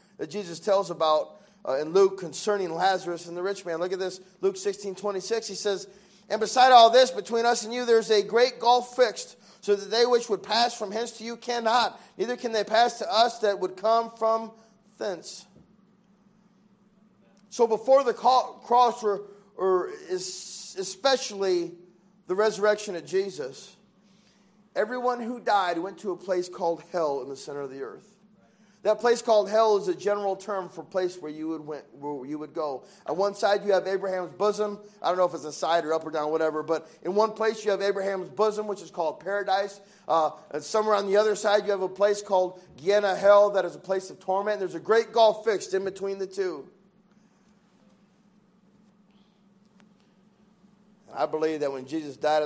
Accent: American